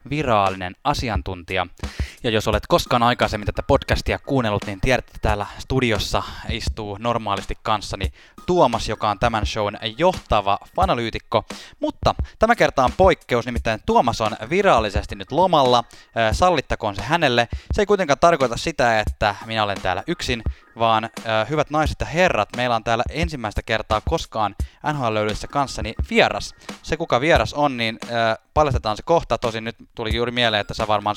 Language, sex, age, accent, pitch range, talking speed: Finnish, male, 20-39, native, 100-125 Hz, 155 wpm